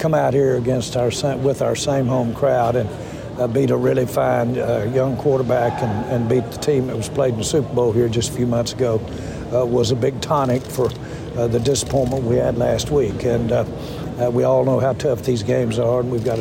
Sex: male